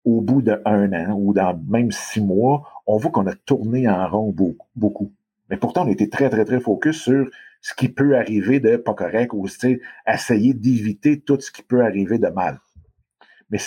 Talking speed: 205 wpm